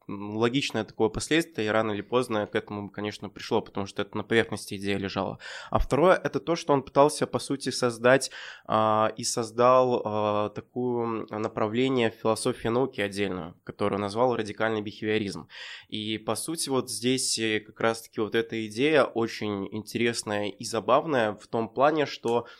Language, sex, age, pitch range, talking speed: Russian, male, 20-39, 105-120 Hz, 155 wpm